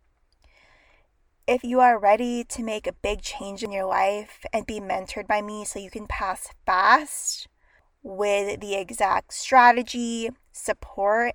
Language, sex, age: English, female, 20-39